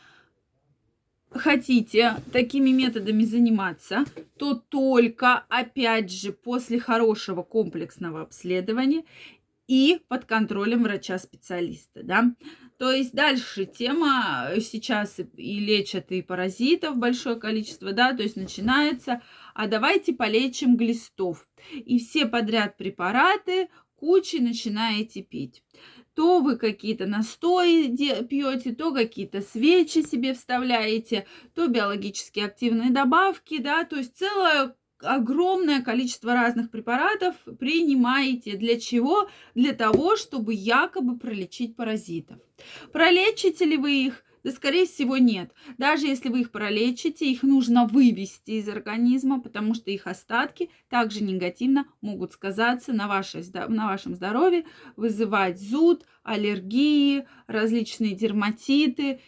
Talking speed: 110 wpm